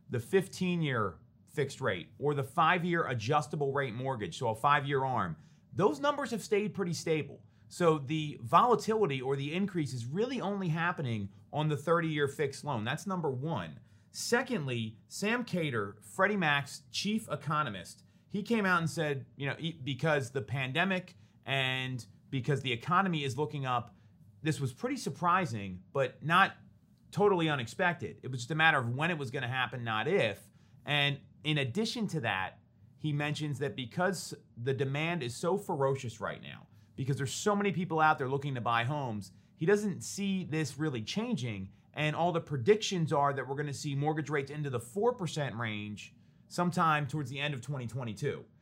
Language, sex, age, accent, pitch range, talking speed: English, male, 30-49, American, 125-165 Hz, 175 wpm